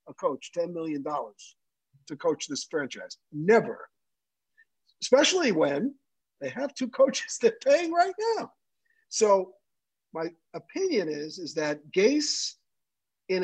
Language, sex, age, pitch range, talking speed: English, male, 50-69, 165-255 Hz, 115 wpm